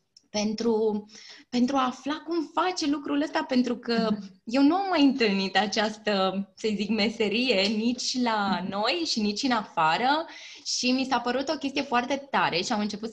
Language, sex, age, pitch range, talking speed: Romanian, female, 20-39, 205-275 Hz, 170 wpm